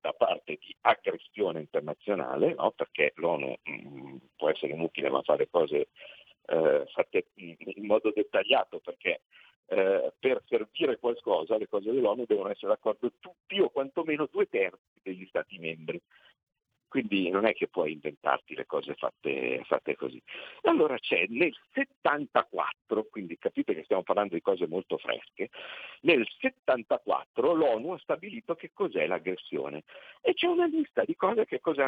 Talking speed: 150 wpm